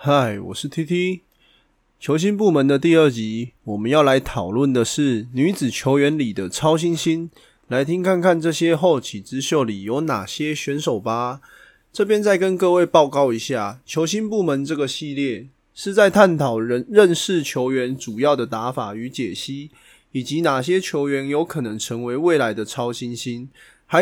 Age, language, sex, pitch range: 20-39, Chinese, male, 125-185 Hz